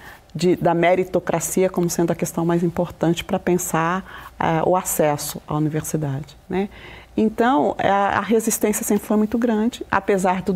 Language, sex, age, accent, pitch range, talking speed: Portuguese, female, 40-59, Brazilian, 175-215 Hz, 155 wpm